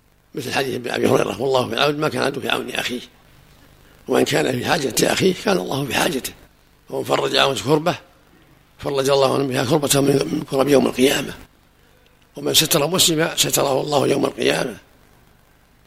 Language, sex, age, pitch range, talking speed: Arabic, male, 50-69, 130-155 Hz, 165 wpm